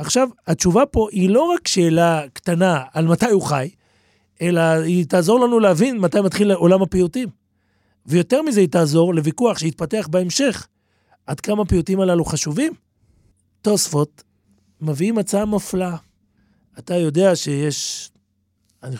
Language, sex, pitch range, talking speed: Hebrew, male, 120-195 Hz, 130 wpm